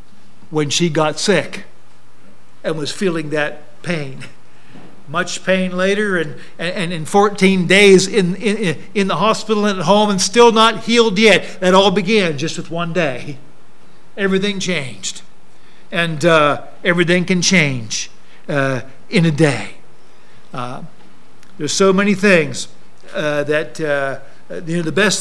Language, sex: English, male